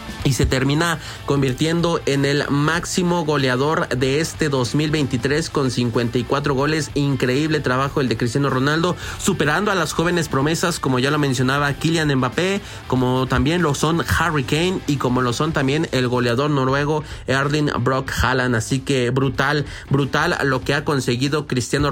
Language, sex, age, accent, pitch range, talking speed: Spanish, male, 30-49, Mexican, 135-180 Hz, 155 wpm